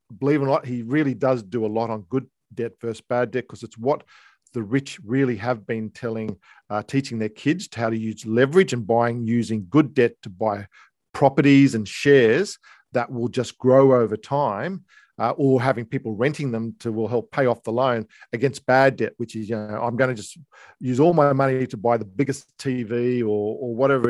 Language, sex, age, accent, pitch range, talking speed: English, male, 50-69, Australian, 115-140 Hz, 210 wpm